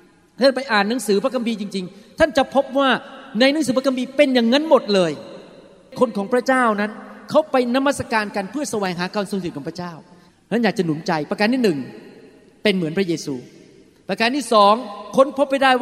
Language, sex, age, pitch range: Thai, male, 30-49, 185-245 Hz